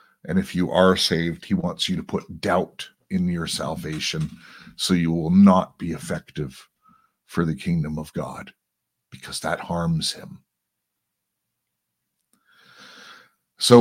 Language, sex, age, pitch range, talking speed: English, male, 50-69, 90-145 Hz, 130 wpm